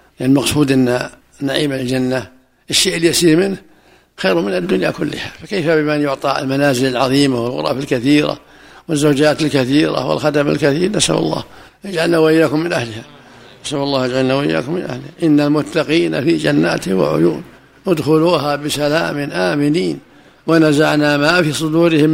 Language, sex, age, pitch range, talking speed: Arabic, male, 60-79, 135-165 Hz, 125 wpm